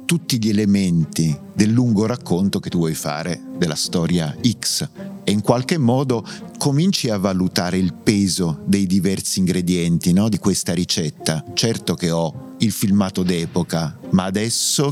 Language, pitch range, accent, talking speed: Italian, 90-135 Hz, native, 145 wpm